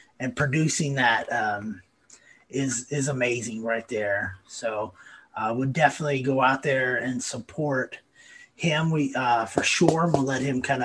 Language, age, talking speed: English, 30-49, 155 wpm